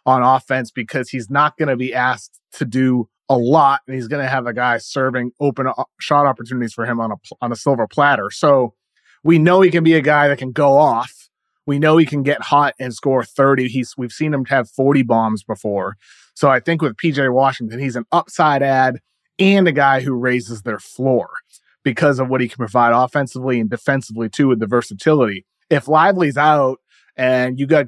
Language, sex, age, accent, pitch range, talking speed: English, male, 30-49, American, 120-145 Hz, 215 wpm